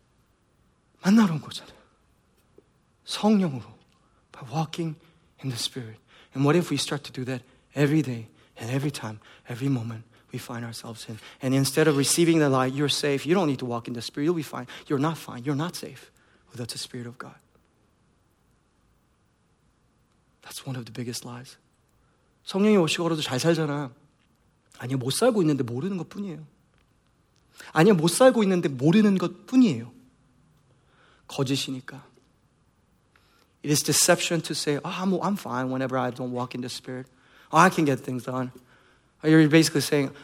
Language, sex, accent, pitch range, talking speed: English, male, Korean, 125-160 Hz, 155 wpm